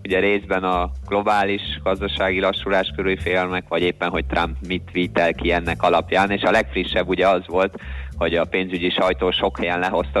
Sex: male